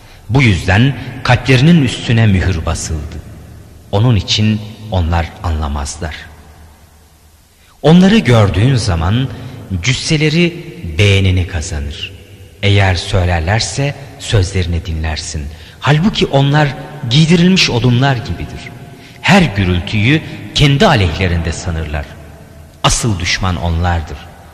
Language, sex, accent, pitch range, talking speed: Turkish, male, native, 85-125 Hz, 80 wpm